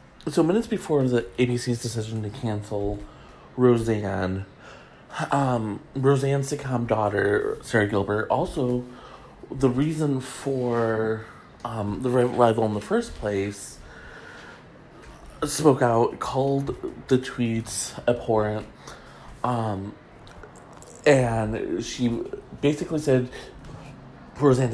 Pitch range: 105-130 Hz